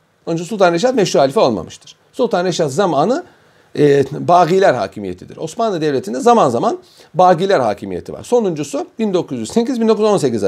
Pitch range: 150-205 Hz